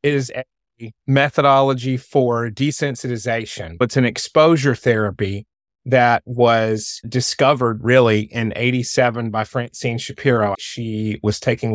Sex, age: male, 30-49